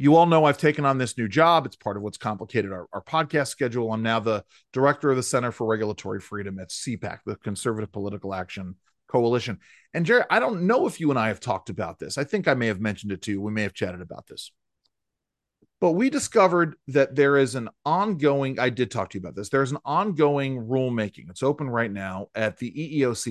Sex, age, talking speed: male, 40-59, 230 wpm